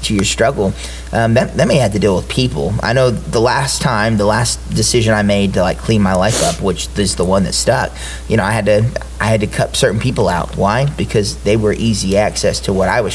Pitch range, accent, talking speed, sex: 100-120 Hz, American, 255 wpm, male